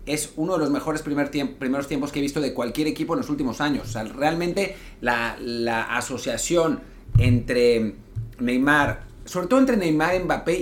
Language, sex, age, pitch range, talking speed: Spanish, male, 40-59, 125-185 Hz, 180 wpm